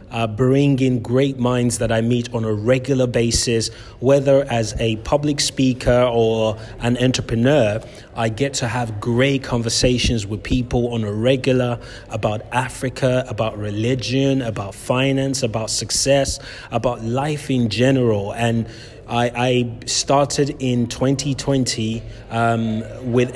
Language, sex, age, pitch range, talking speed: English, male, 30-49, 115-130 Hz, 140 wpm